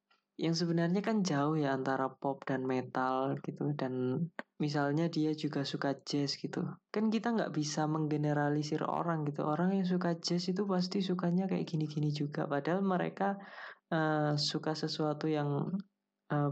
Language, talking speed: Indonesian, 150 wpm